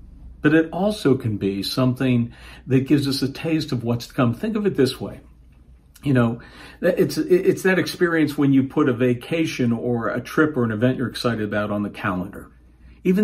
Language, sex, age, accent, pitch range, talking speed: English, male, 50-69, American, 100-145 Hz, 200 wpm